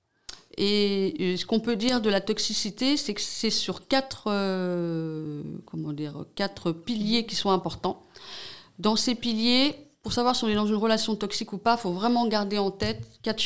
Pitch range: 170-220 Hz